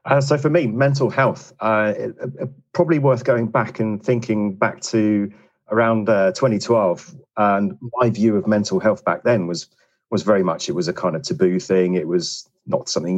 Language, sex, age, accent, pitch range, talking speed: English, male, 40-59, British, 100-140 Hz, 185 wpm